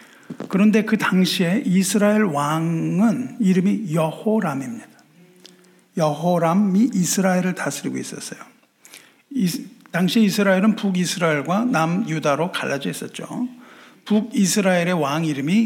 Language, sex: Korean, male